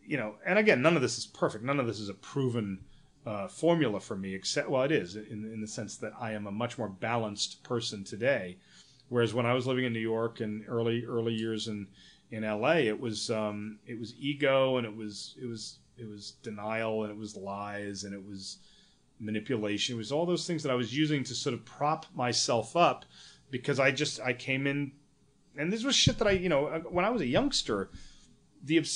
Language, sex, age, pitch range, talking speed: English, male, 30-49, 110-155 Hz, 225 wpm